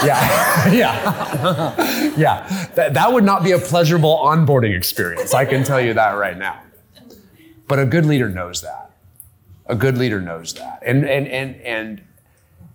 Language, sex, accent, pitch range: English, male, American, 100-135 Hz